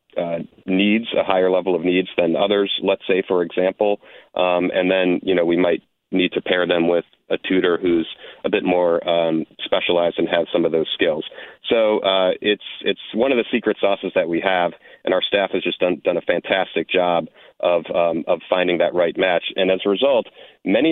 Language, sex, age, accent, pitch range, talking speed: English, male, 40-59, American, 85-100 Hz, 210 wpm